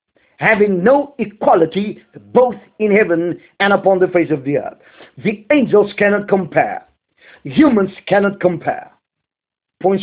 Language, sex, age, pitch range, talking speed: English, male, 50-69, 180-245 Hz, 125 wpm